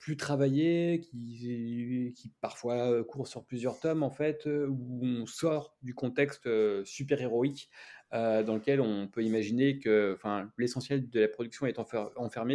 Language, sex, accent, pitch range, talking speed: French, male, French, 110-135 Hz, 155 wpm